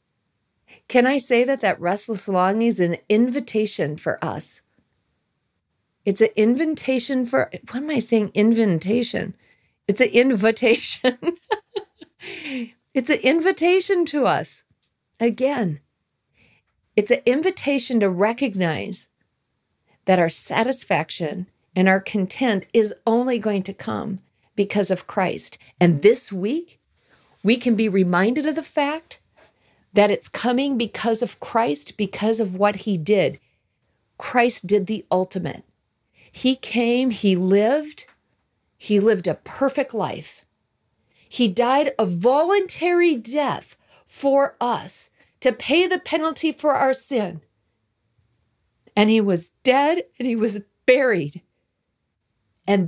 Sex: female